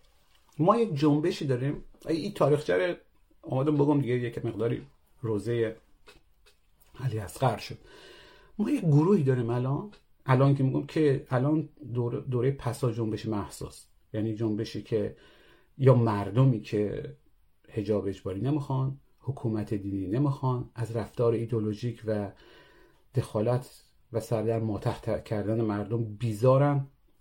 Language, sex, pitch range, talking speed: Persian, male, 110-140 Hz, 115 wpm